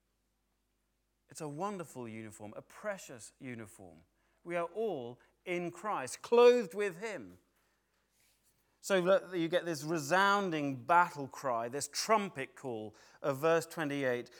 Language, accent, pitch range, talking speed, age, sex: English, British, 150-210 Hz, 115 wpm, 40-59, male